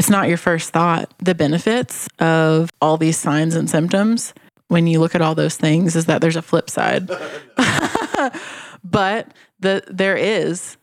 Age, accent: 20-39, American